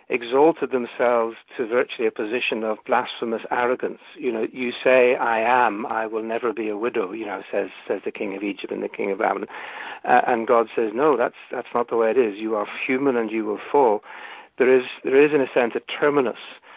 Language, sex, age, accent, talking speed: English, male, 60-79, British, 220 wpm